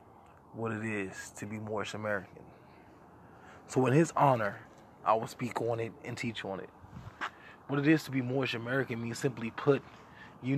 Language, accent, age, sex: English, American, 20-39, male